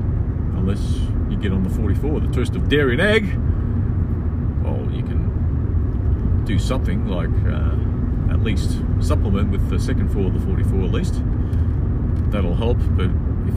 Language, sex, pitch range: English, male, 90-110 Hz